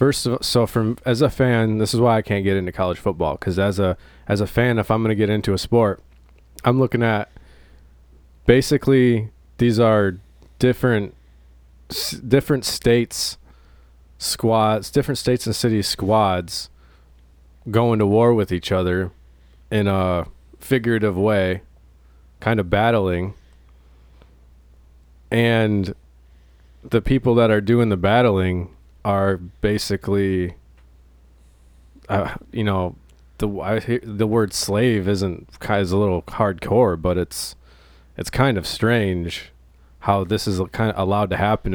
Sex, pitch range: male, 70-110 Hz